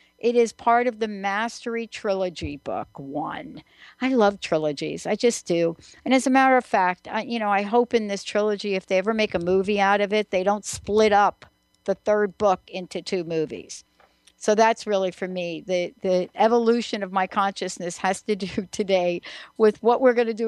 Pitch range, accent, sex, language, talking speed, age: 190-235 Hz, American, female, English, 200 wpm, 60-79